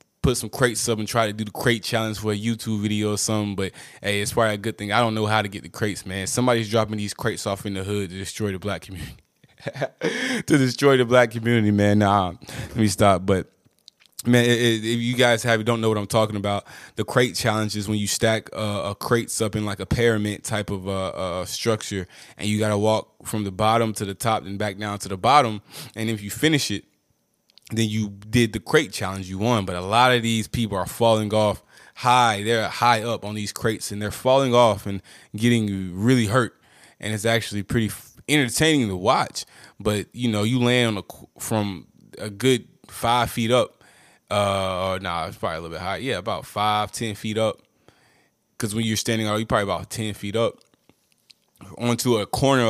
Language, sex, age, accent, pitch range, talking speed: English, male, 20-39, American, 100-120 Hz, 215 wpm